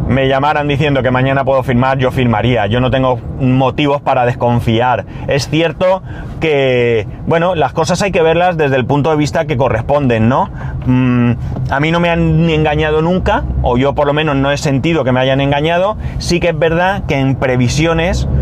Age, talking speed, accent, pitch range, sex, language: 30-49, 190 wpm, Spanish, 125-155 Hz, male, Spanish